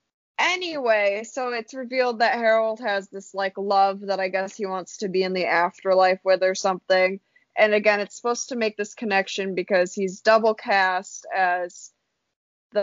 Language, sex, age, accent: English, female, 20-39, American